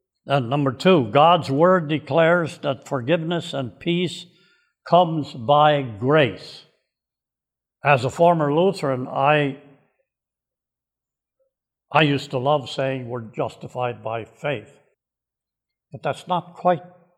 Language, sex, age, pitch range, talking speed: English, male, 70-89, 125-165 Hz, 110 wpm